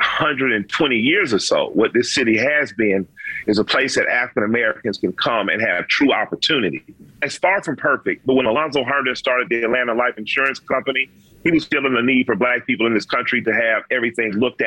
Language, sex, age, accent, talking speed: English, male, 40-59, American, 200 wpm